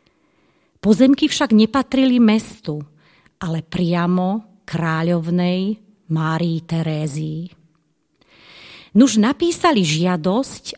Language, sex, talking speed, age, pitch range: Slovak, female, 65 wpm, 30-49, 160-215 Hz